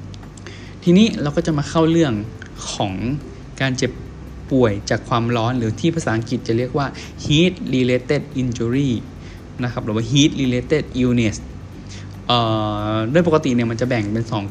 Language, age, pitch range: Thai, 20-39, 110-140 Hz